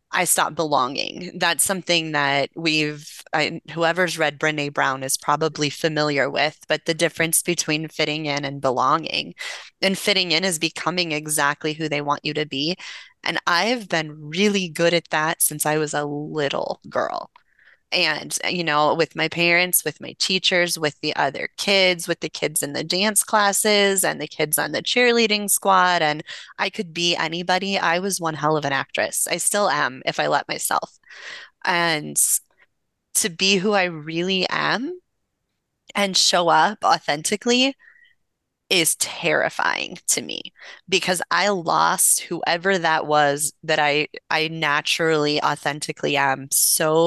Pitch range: 150-190 Hz